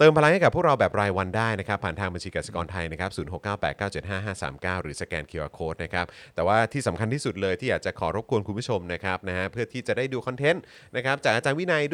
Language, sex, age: Thai, male, 30-49